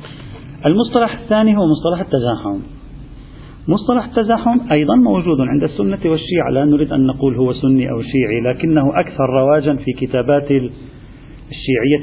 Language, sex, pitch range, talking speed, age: Arabic, male, 125-150 Hz, 130 wpm, 40-59